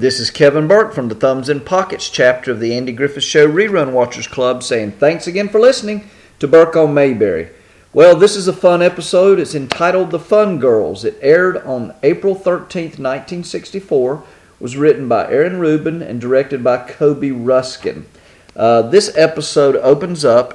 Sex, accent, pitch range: male, American, 125-165 Hz